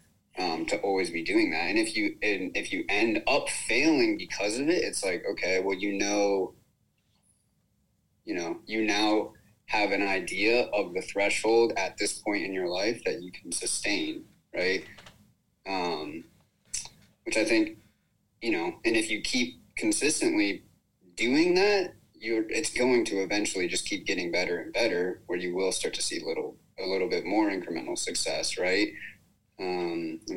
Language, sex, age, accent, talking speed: English, male, 30-49, American, 170 wpm